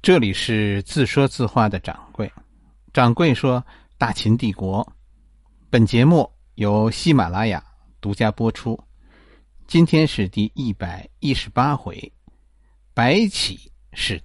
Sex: male